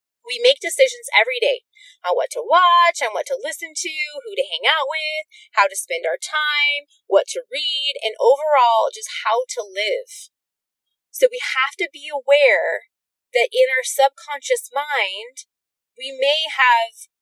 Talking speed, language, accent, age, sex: 165 wpm, English, American, 20-39, female